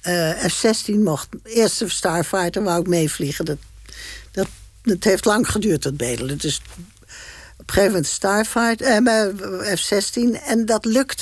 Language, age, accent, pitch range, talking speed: Dutch, 60-79, Dutch, 125-210 Hz, 150 wpm